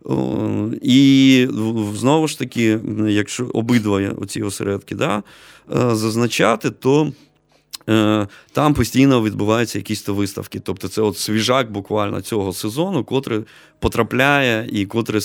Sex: male